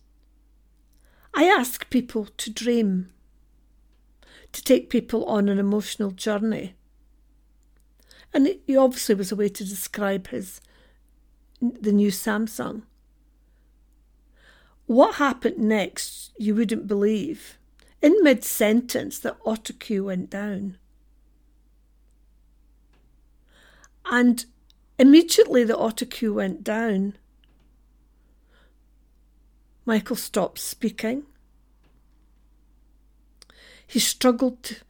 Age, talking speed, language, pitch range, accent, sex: 50-69, 80 wpm, English, 165-240 Hz, British, female